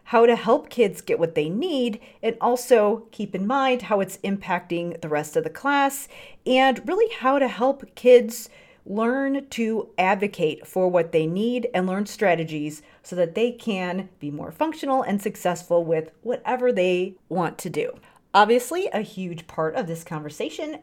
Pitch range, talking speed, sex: 170-250 Hz, 170 wpm, female